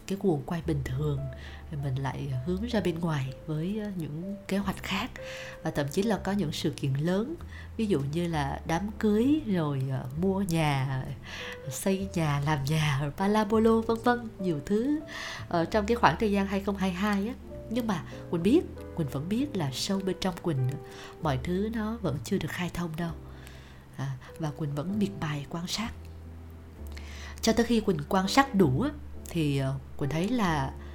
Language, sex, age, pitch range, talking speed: Vietnamese, female, 20-39, 140-205 Hz, 175 wpm